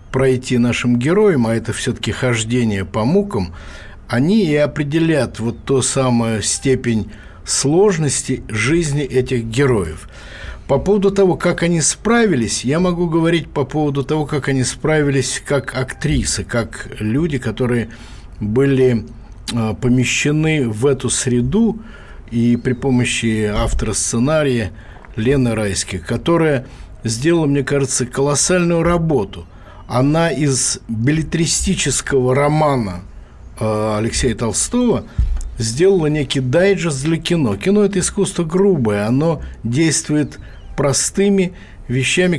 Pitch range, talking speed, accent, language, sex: 115-155 Hz, 110 wpm, native, Russian, male